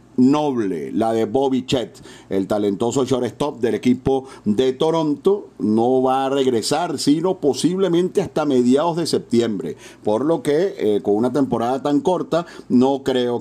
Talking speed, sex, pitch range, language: 150 wpm, male, 120-145 Hz, Spanish